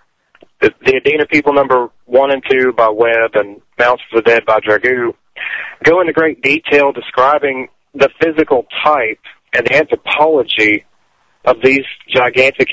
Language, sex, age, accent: English, male, 40-59, American